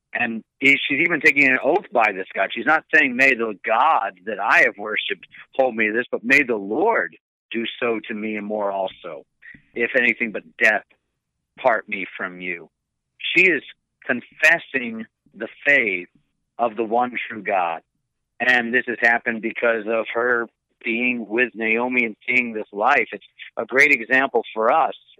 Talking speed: 170 wpm